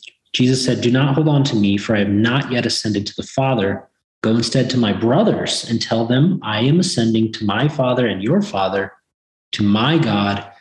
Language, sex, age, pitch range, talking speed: English, male, 30-49, 105-130 Hz, 210 wpm